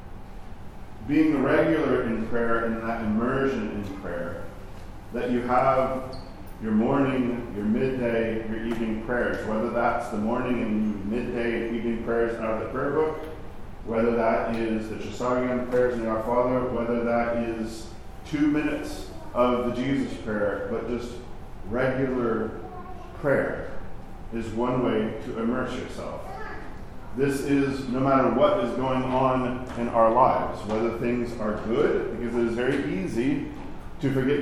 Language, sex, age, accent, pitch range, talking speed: English, male, 40-59, American, 115-130 Hz, 145 wpm